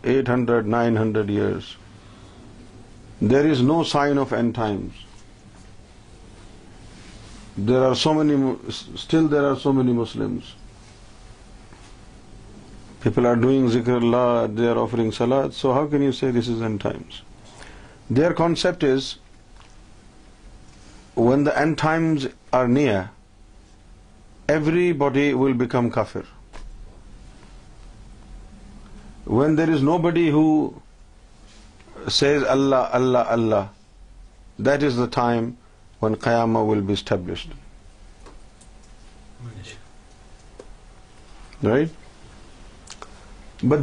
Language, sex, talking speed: Urdu, male, 95 wpm